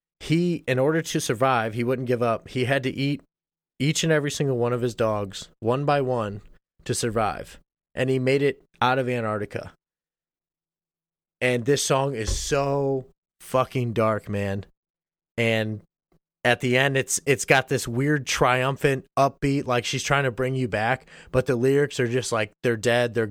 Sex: male